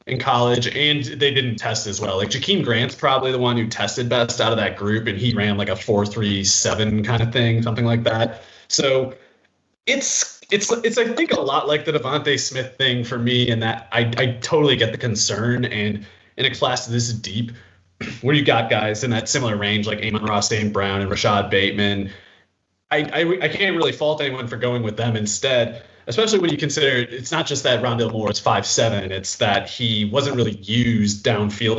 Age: 30-49